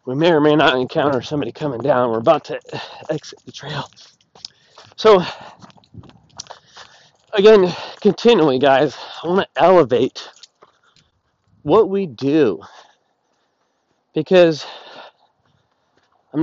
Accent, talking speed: American, 100 wpm